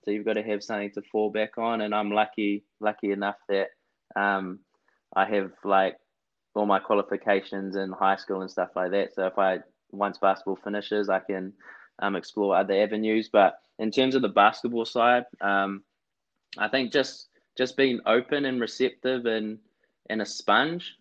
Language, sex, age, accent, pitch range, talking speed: English, male, 20-39, Australian, 95-110 Hz, 175 wpm